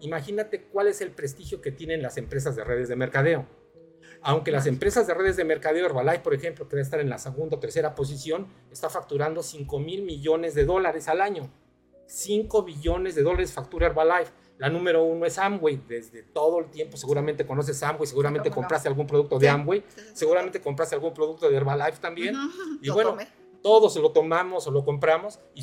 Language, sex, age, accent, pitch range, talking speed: Spanish, male, 40-59, Mexican, 140-185 Hz, 185 wpm